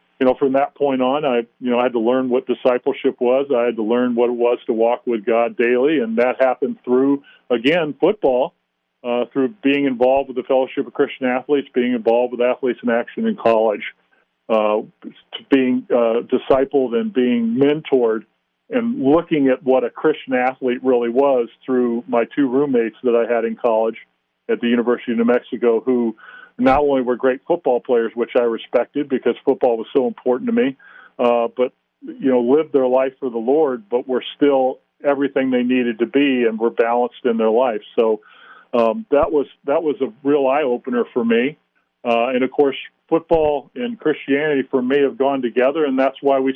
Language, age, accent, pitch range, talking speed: English, 40-59, American, 120-140 Hz, 195 wpm